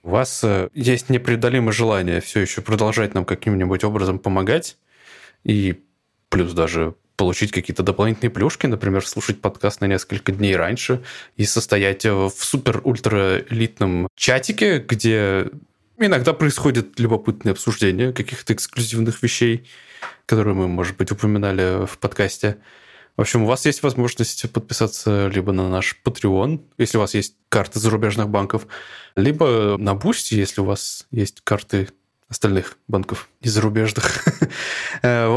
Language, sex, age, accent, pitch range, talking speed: Russian, male, 20-39, native, 95-120 Hz, 135 wpm